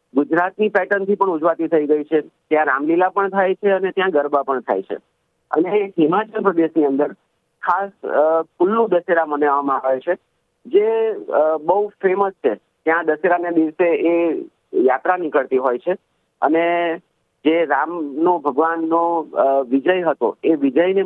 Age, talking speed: 50-69, 140 wpm